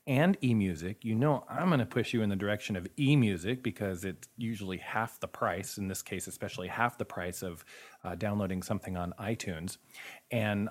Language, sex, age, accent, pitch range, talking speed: English, male, 30-49, American, 95-125 Hz, 185 wpm